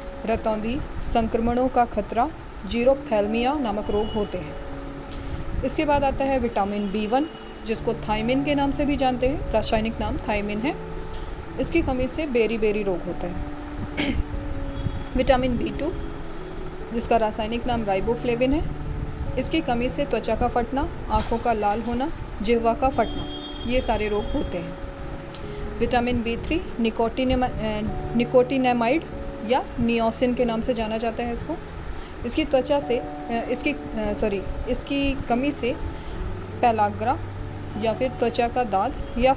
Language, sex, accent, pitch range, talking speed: Hindi, female, native, 220-260 Hz, 140 wpm